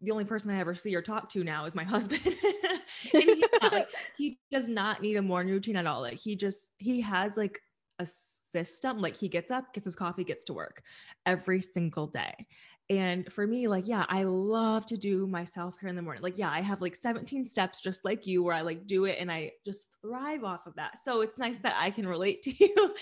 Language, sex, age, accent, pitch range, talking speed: English, female, 20-39, American, 180-240 Hz, 240 wpm